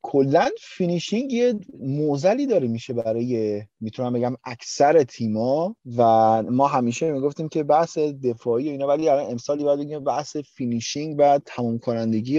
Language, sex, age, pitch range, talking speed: Persian, male, 30-49, 115-170 Hz, 135 wpm